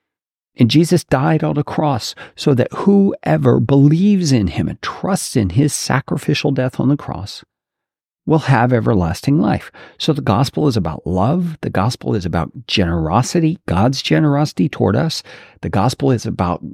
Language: English